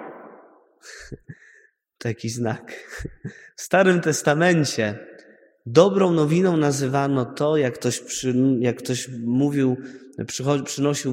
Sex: male